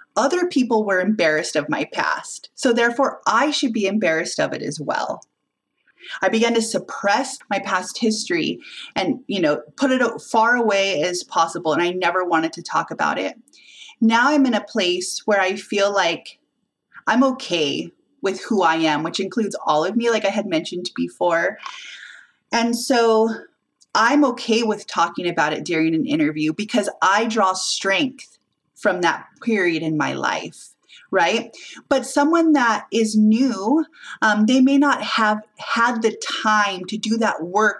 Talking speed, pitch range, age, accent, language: 170 wpm, 195-260 Hz, 30-49, American, English